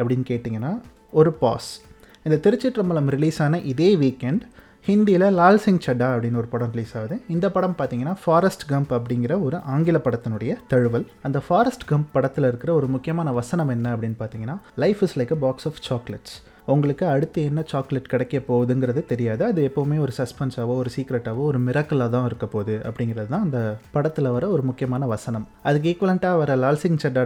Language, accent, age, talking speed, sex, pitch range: Tamil, native, 30-49, 150 wpm, male, 120-160 Hz